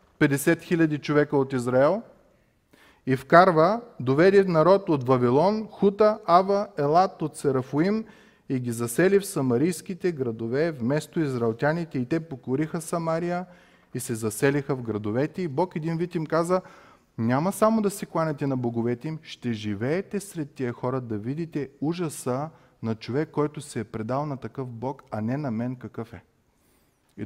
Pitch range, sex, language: 120-165 Hz, male, Bulgarian